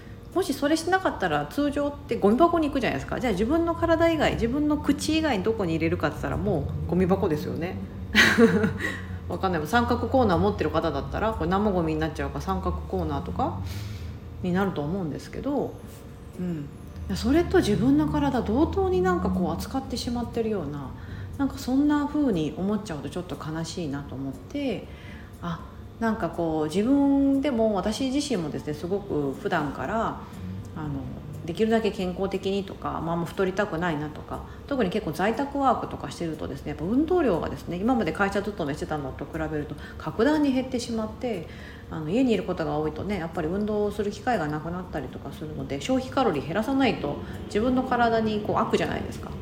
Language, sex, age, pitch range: Japanese, female, 40-59, 155-255 Hz